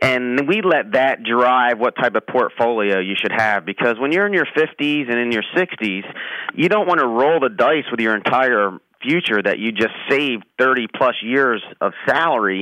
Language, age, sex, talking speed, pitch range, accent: English, 30-49, male, 195 wpm, 115-150 Hz, American